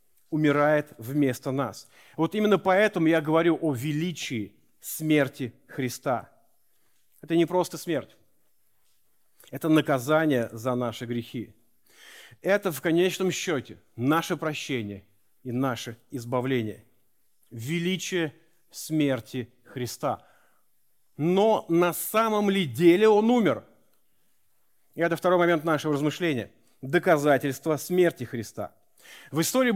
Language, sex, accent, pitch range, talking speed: Russian, male, native, 135-190 Hz, 105 wpm